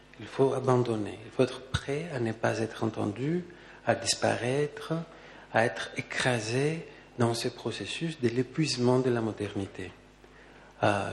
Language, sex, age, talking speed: French, male, 50-69, 140 wpm